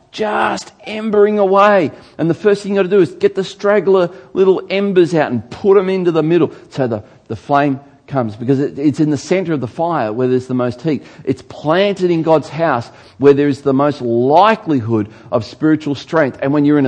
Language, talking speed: English, 210 wpm